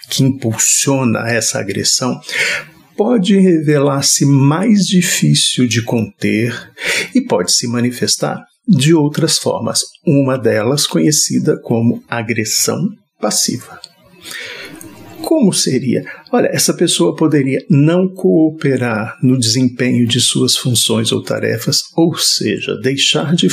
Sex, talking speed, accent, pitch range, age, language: male, 105 wpm, Brazilian, 120-175 Hz, 50-69, Portuguese